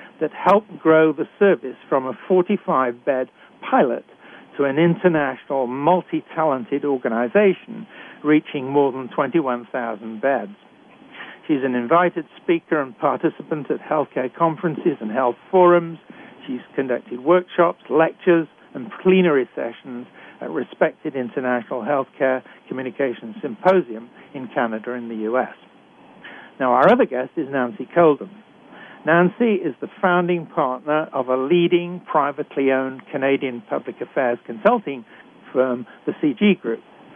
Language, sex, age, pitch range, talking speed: English, male, 60-79, 130-180 Hz, 120 wpm